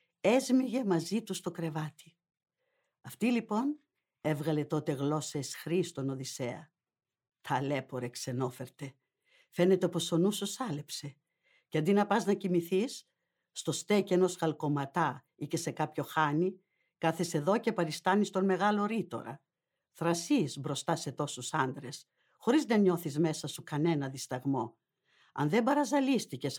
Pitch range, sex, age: 145-190 Hz, female, 60-79